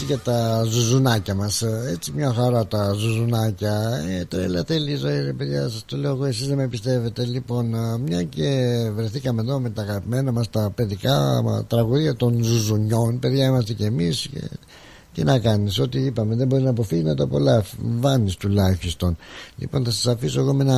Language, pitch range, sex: Greek, 105-130 Hz, male